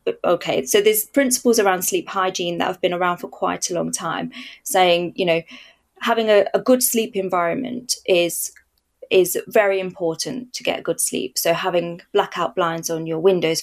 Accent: British